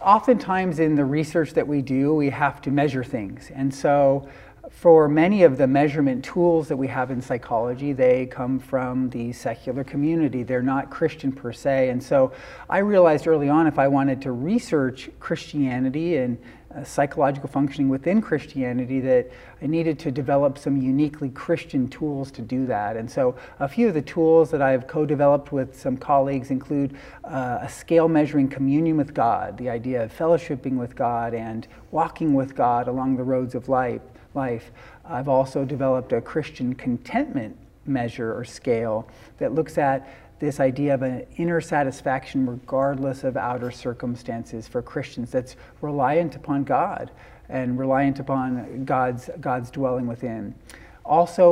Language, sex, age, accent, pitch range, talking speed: English, male, 40-59, American, 125-150 Hz, 160 wpm